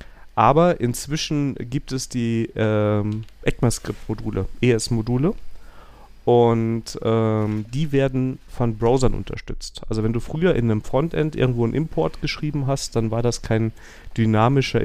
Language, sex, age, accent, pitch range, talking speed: German, male, 40-59, German, 110-135 Hz, 130 wpm